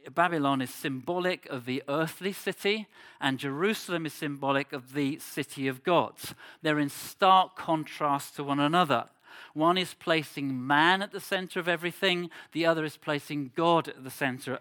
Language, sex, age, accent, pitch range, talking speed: English, male, 50-69, British, 135-165 Hz, 165 wpm